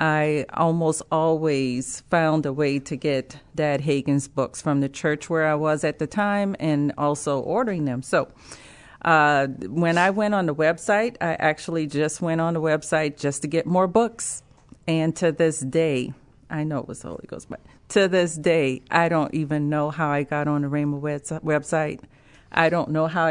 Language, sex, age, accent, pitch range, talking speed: English, female, 40-59, American, 150-190 Hz, 190 wpm